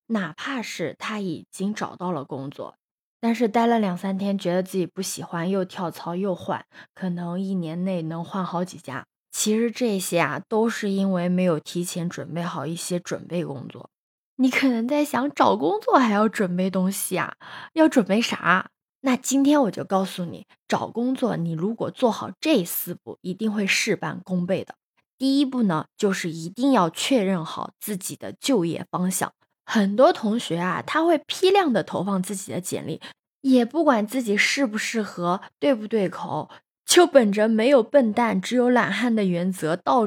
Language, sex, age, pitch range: Chinese, female, 20-39, 175-240 Hz